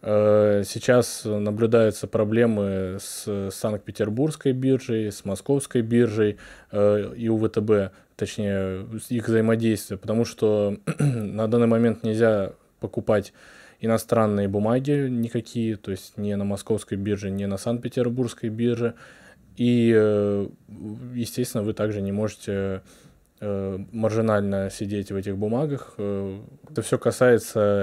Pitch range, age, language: 100-115 Hz, 20-39, Russian